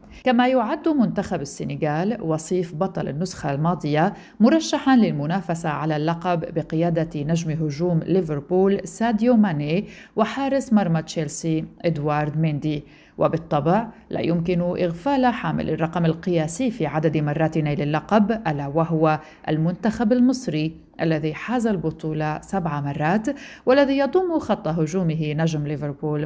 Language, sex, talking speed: Arabic, female, 115 wpm